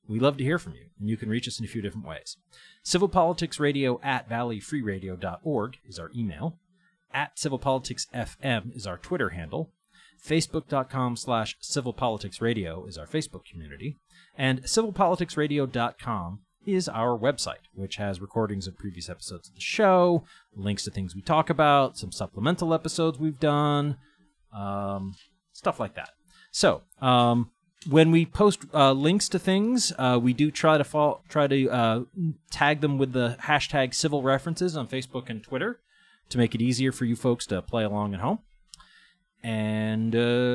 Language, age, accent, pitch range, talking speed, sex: English, 30-49, American, 110-150 Hz, 160 wpm, male